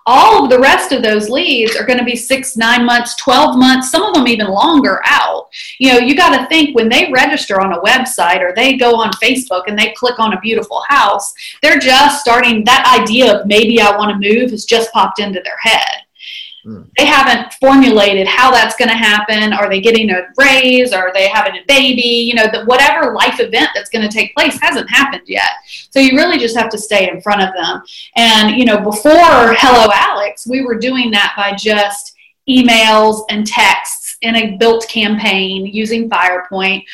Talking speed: 205 wpm